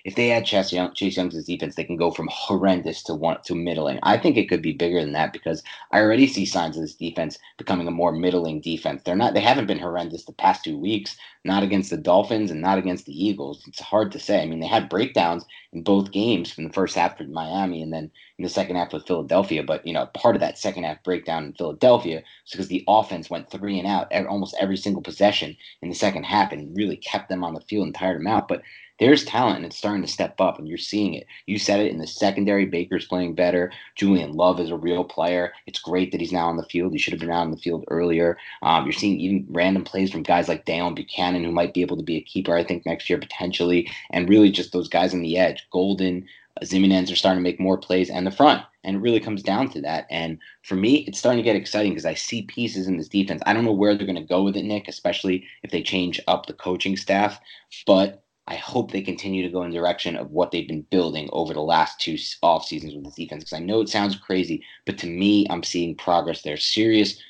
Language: English